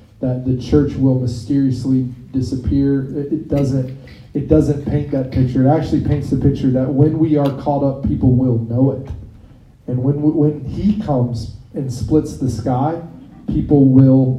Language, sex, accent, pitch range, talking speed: English, male, American, 125-150 Hz, 165 wpm